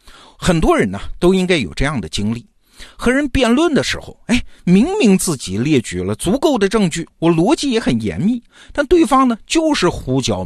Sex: male